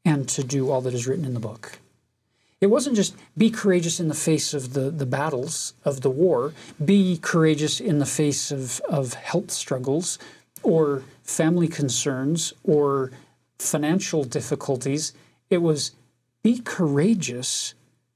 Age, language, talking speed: 40-59, English, 145 wpm